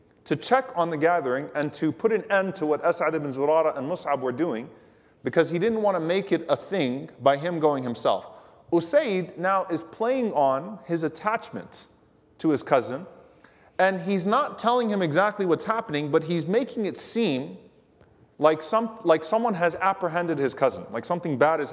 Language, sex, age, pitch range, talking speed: English, male, 30-49, 145-180 Hz, 180 wpm